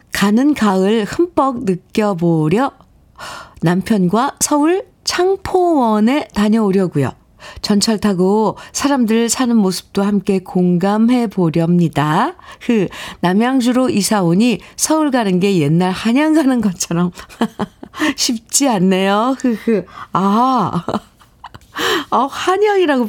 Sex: female